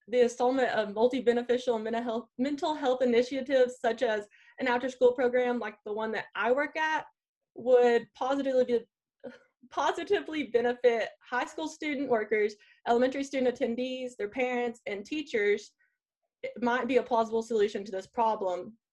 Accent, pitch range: American, 220-265 Hz